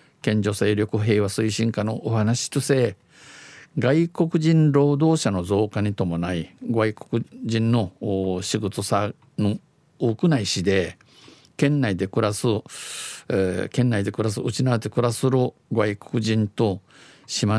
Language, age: Japanese, 50-69